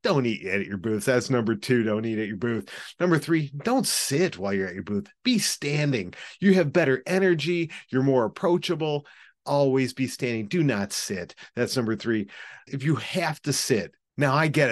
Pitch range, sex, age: 110-150 Hz, male, 40-59